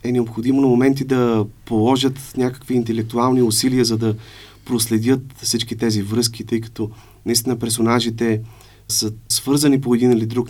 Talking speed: 145 wpm